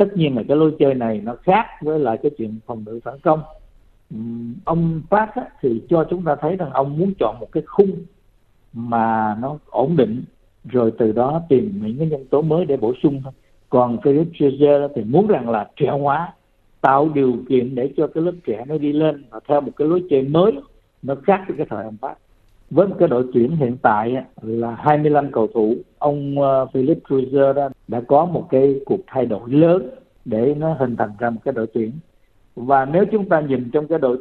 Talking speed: 210 wpm